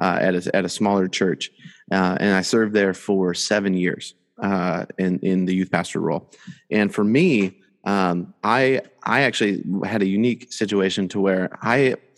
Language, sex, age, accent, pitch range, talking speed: English, male, 30-49, American, 95-100 Hz, 175 wpm